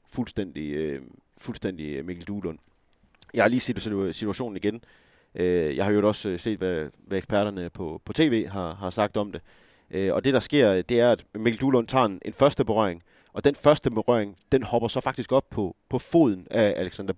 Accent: native